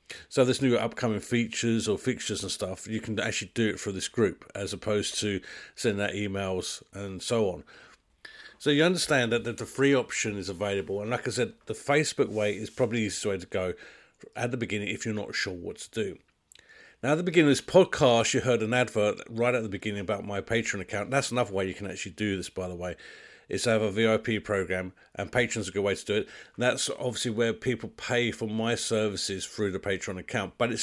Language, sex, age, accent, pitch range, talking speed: English, male, 50-69, British, 100-120 Hz, 230 wpm